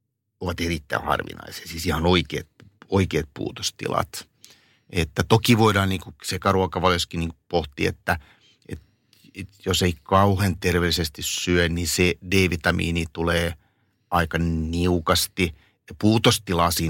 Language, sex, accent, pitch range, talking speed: Finnish, male, native, 85-95 Hz, 105 wpm